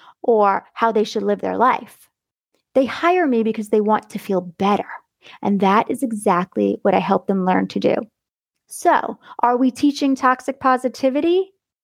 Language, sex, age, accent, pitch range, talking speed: English, female, 30-49, American, 200-255 Hz, 165 wpm